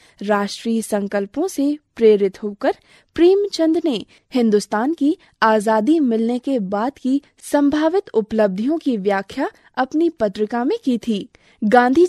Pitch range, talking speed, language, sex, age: 210-300 Hz, 125 wpm, Hindi, female, 20-39